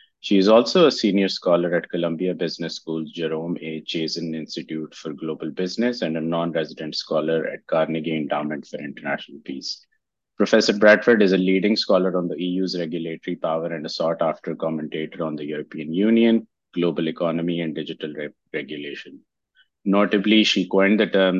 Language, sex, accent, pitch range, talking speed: English, male, Indian, 80-95 Hz, 160 wpm